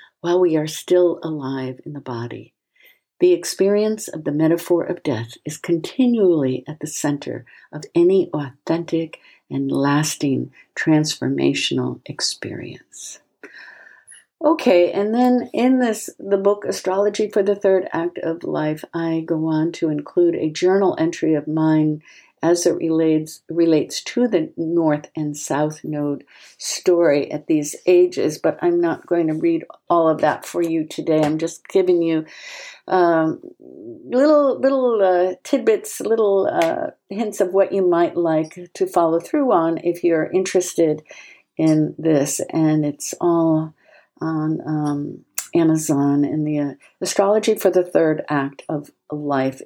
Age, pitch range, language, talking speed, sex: 60-79, 155-220 Hz, English, 140 wpm, female